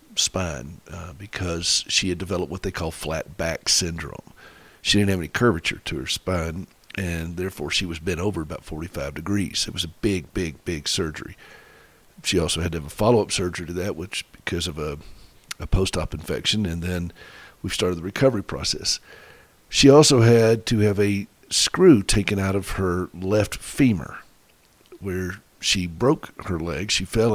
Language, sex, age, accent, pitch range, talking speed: English, male, 50-69, American, 85-105 Hz, 175 wpm